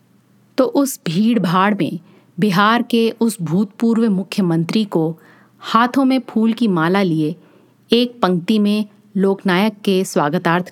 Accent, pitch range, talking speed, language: native, 180-230 Hz, 130 wpm, Hindi